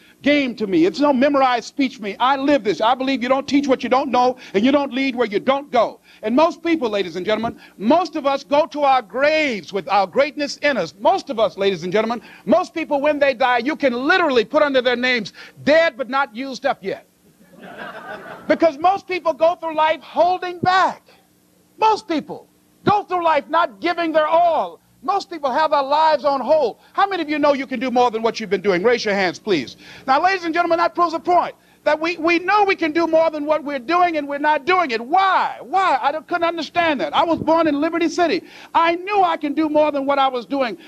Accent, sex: American, male